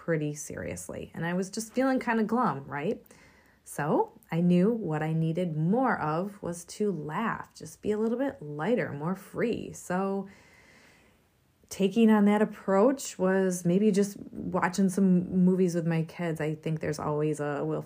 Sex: female